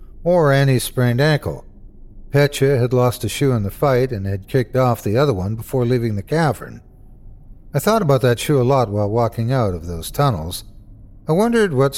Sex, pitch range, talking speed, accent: male, 120-155 Hz, 195 wpm, American